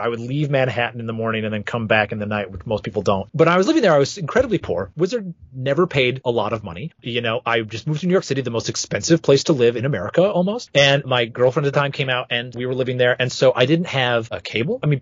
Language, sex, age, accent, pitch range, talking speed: English, male, 30-49, American, 115-160 Hz, 295 wpm